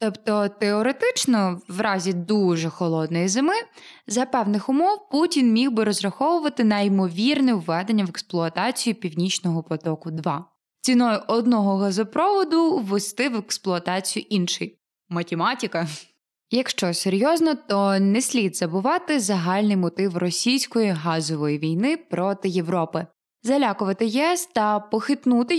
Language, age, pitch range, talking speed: Ukrainian, 20-39, 180-255 Hz, 110 wpm